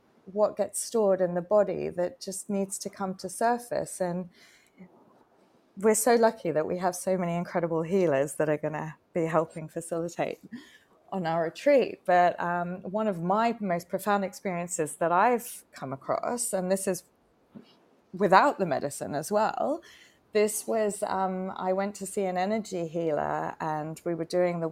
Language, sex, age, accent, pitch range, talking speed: English, female, 20-39, British, 170-200 Hz, 165 wpm